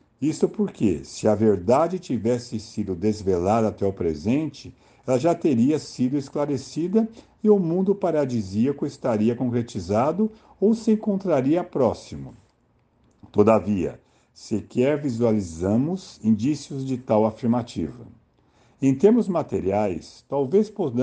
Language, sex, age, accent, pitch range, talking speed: Portuguese, male, 60-79, Brazilian, 105-155 Hz, 105 wpm